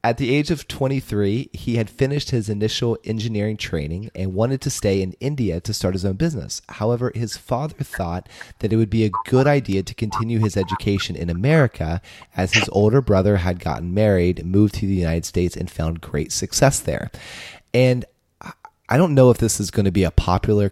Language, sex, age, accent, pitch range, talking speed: English, male, 30-49, American, 90-115 Hz, 200 wpm